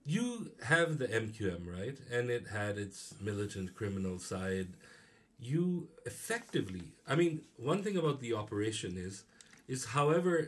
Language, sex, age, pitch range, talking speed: English, male, 50-69, 110-150 Hz, 150 wpm